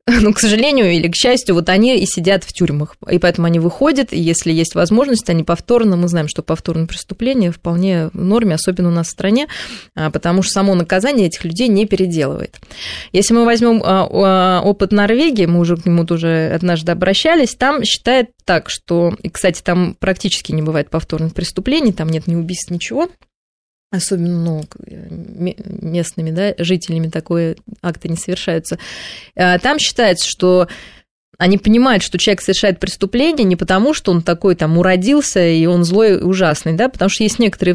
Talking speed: 165 wpm